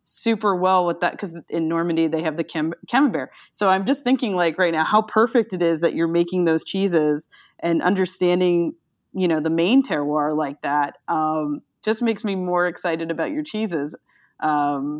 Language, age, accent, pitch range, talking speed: English, 20-39, American, 155-195 Hz, 185 wpm